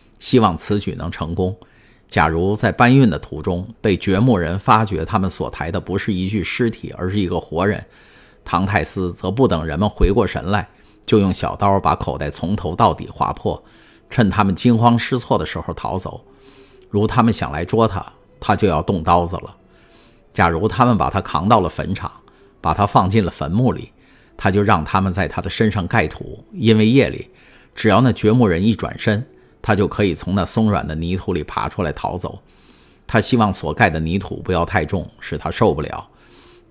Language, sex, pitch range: Chinese, male, 90-110 Hz